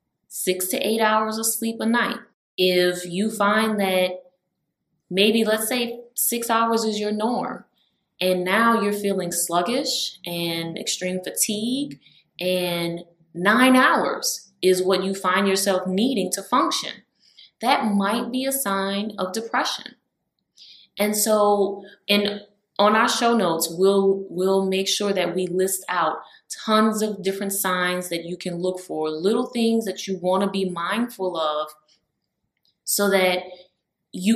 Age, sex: 20-39, female